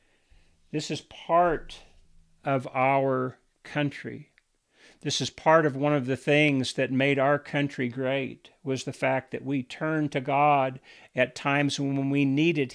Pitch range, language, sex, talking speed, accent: 130-145 Hz, English, male, 150 wpm, American